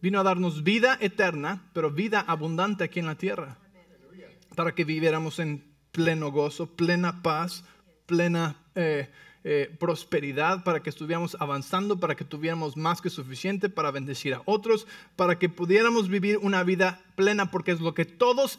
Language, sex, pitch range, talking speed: English, male, 145-205 Hz, 160 wpm